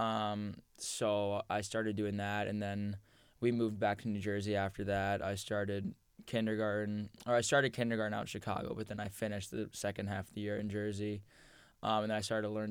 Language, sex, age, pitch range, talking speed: English, male, 10-29, 105-110 Hz, 210 wpm